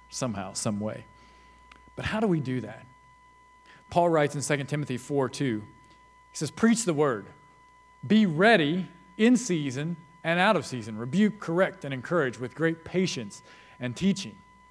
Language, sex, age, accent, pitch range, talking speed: English, male, 40-59, American, 125-200 Hz, 155 wpm